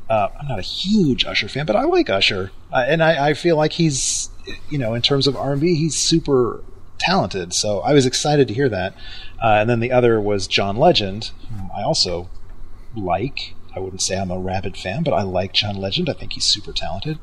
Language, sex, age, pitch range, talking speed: English, male, 30-49, 90-130 Hz, 220 wpm